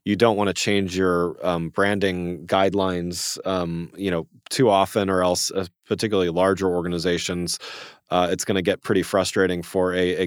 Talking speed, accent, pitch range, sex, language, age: 175 wpm, American, 90-105 Hz, male, English, 30-49